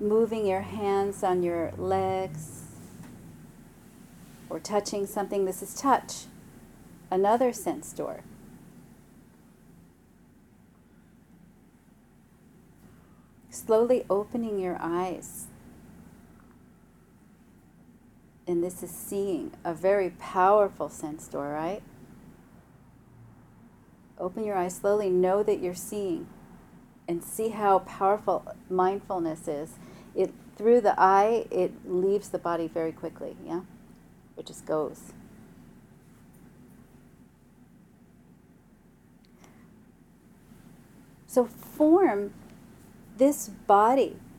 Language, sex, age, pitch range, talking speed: English, female, 40-59, 180-225 Hz, 80 wpm